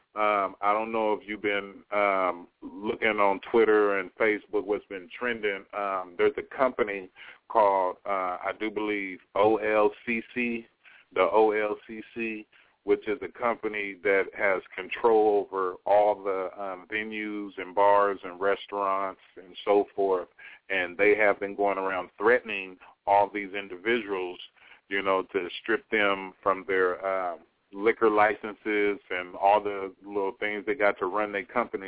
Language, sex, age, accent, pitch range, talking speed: English, male, 40-59, American, 100-115 Hz, 145 wpm